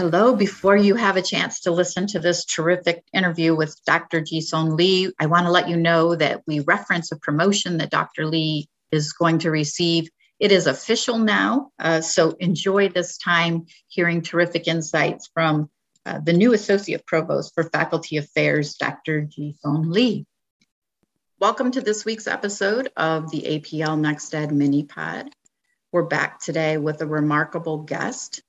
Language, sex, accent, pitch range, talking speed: English, female, American, 150-185 Hz, 160 wpm